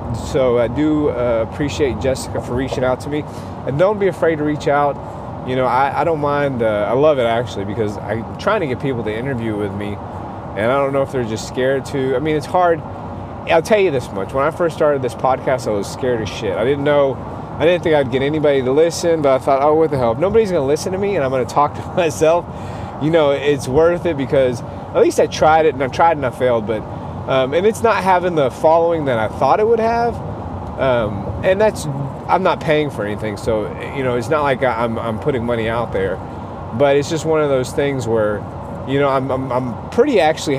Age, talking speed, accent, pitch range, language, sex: 30-49, 245 wpm, American, 115-160 Hz, English, male